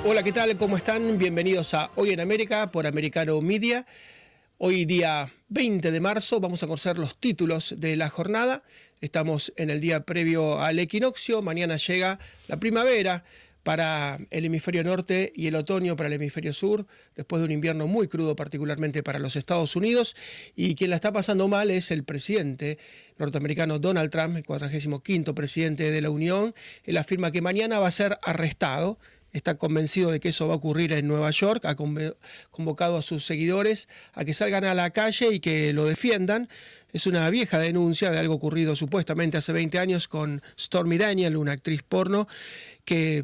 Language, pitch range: Spanish, 155-195 Hz